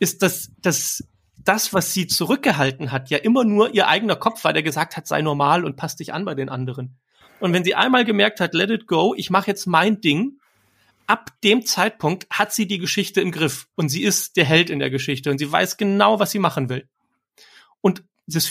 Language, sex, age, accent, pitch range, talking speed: German, male, 30-49, German, 145-200 Hz, 220 wpm